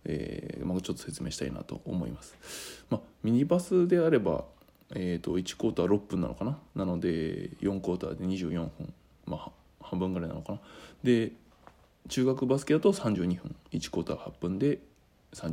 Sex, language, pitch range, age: male, Japanese, 95-120 Hz, 20-39